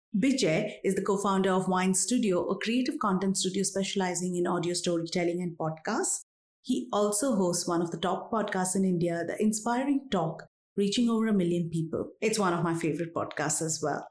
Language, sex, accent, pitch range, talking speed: English, female, Indian, 175-225 Hz, 185 wpm